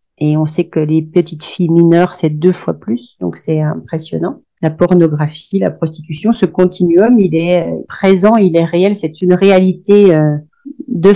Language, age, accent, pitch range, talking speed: French, 40-59, French, 170-200 Hz, 165 wpm